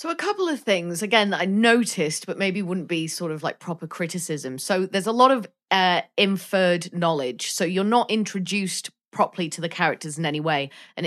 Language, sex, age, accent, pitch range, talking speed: English, female, 30-49, British, 170-210 Hz, 205 wpm